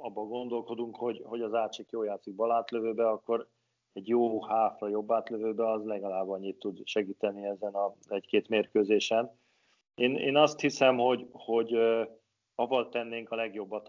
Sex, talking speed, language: male, 145 wpm, Hungarian